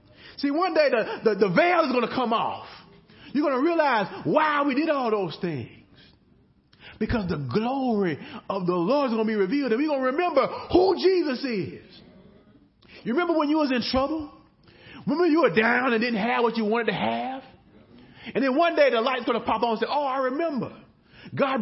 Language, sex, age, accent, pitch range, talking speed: English, male, 30-49, American, 205-290 Hz, 210 wpm